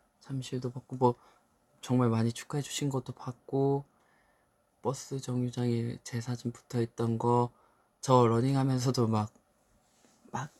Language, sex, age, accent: Korean, male, 20-39, native